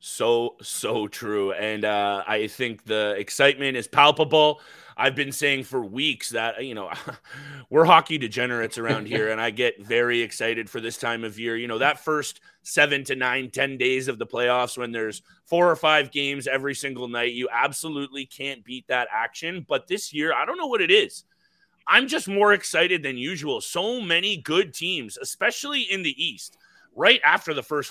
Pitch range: 115-150 Hz